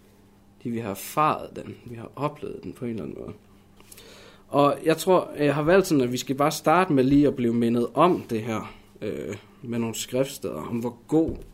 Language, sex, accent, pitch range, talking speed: Danish, male, native, 110-140 Hz, 210 wpm